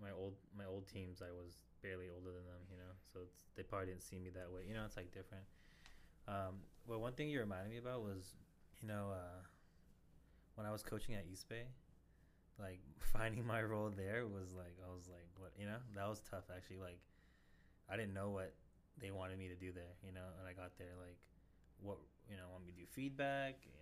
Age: 20-39